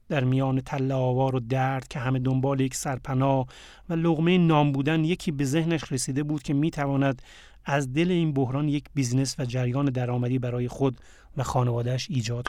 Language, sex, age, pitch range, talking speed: Persian, male, 30-49, 130-155 Hz, 180 wpm